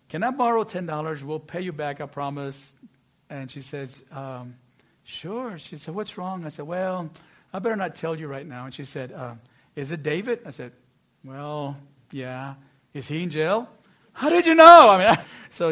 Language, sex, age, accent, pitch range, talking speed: English, male, 50-69, American, 160-230 Hz, 195 wpm